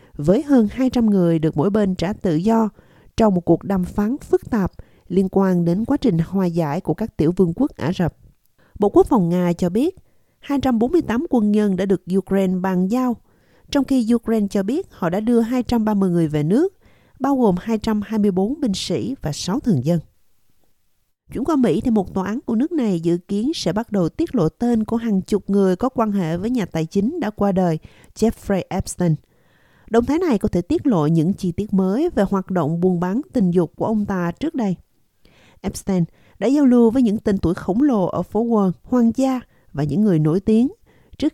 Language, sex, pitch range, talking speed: Vietnamese, female, 175-235 Hz, 210 wpm